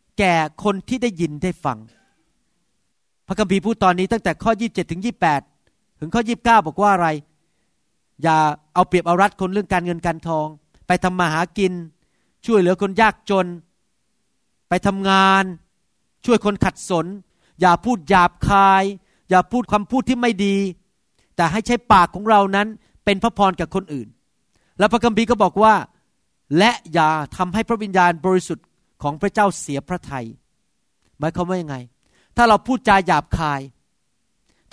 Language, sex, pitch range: Thai, male, 165-205 Hz